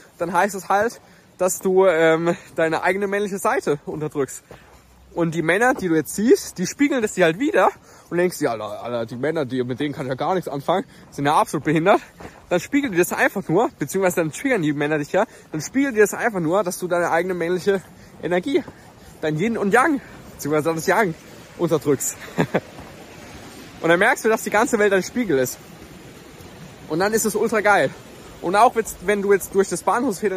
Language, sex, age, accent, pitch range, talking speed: German, male, 20-39, German, 160-200 Hz, 205 wpm